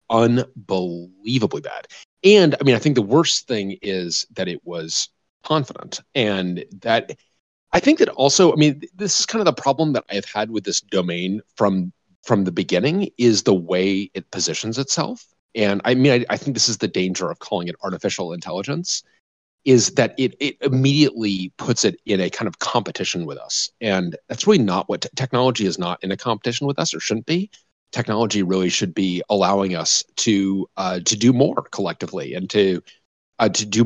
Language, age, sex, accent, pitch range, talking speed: English, 40-59, male, American, 95-145 Hz, 190 wpm